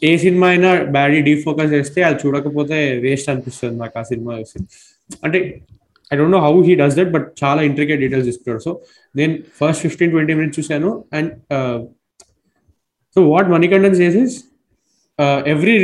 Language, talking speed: Telugu, 120 wpm